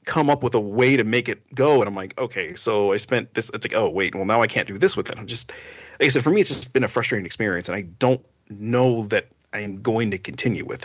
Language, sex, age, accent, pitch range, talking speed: English, male, 40-59, American, 105-145 Hz, 295 wpm